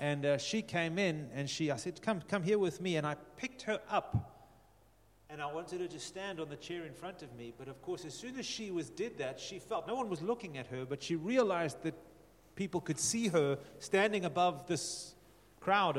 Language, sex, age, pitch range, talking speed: English, male, 40-59, 130-180 Hz, 235 wpm